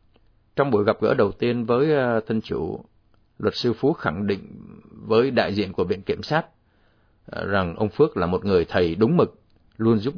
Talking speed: 190 wpm